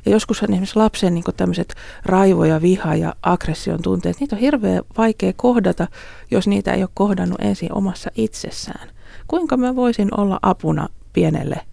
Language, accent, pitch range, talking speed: Finnish, native, 160-205 Hz, 155 wpm